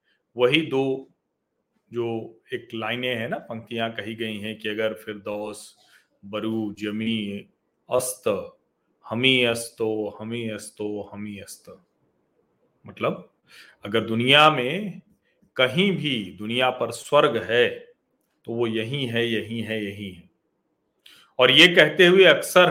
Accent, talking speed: native, 125 wpm